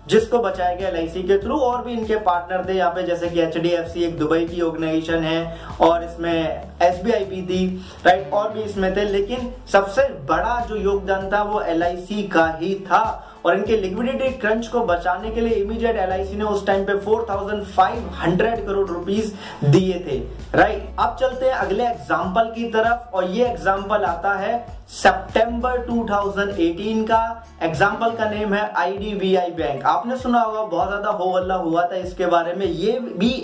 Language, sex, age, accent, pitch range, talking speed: Hindi, male, 30-49, native, 170-210 Hz, 120 wpm